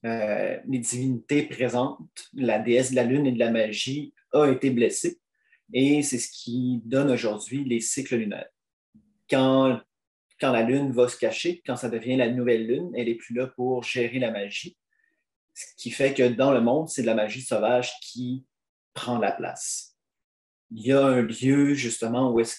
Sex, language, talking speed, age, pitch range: male, French, 185 wpm, 30-49, 115-140 Hz